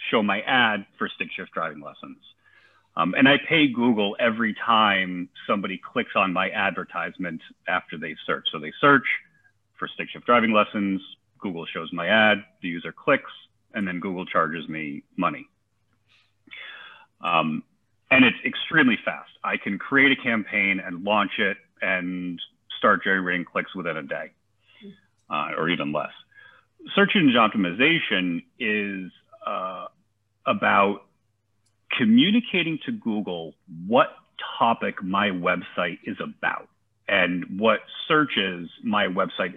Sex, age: male, 40-59